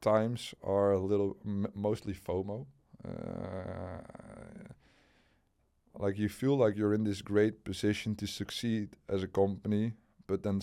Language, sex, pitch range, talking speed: English, male, 95-110 Hz, 130 wpm